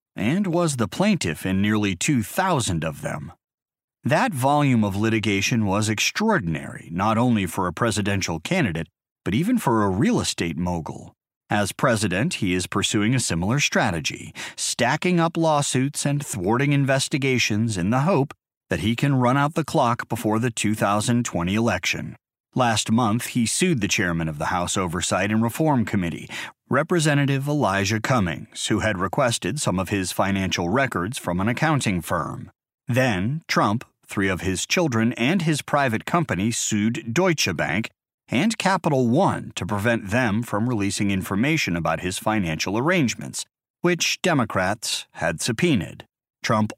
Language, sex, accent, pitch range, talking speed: English, male, American, 100-135 Hz, 150 wpm